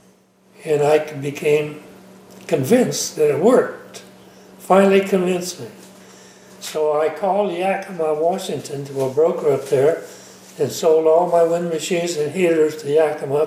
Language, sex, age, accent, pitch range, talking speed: English, male, 60-79, American, 150-200 Hz, 135 wpm